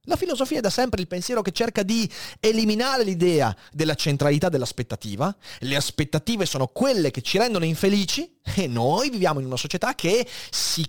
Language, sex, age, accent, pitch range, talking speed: Italian, male, 30-49, native, 120-205 Hz, 170 wpm